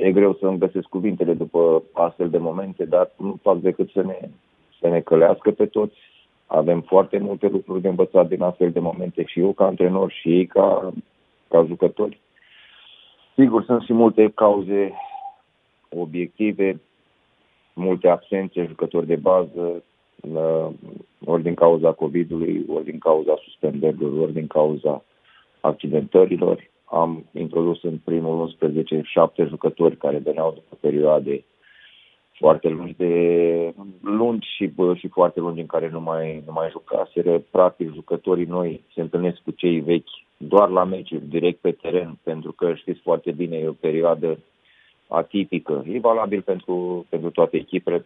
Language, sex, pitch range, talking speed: Romanian, male, 80-95 Hz, 145 wpm